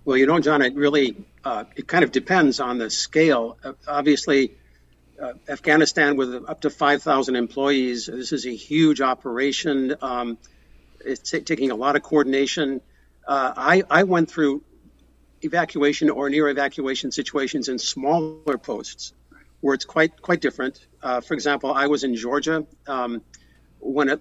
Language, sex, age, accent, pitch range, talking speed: English, male, 50-69, American, 125-150 Hz, 155 wpm